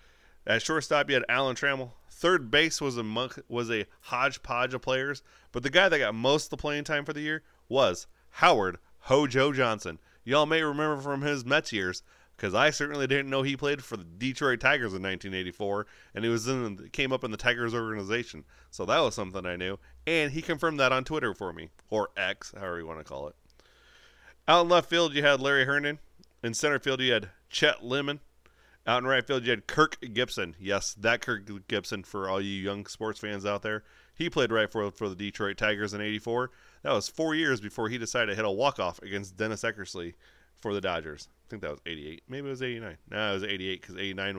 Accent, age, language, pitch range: American, 30-49, English, 100-140 Hz